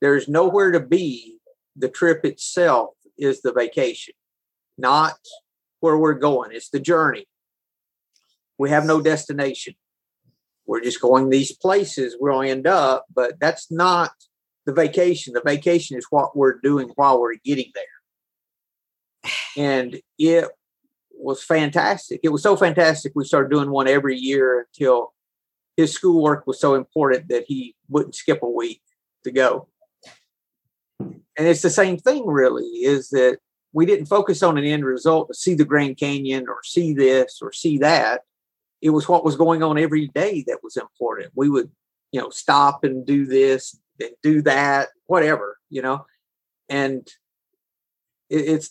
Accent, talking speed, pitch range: American, 155 wpm, 135-175 Hz